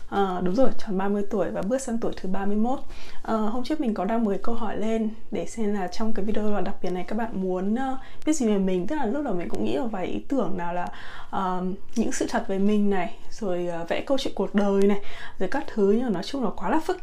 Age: 20-39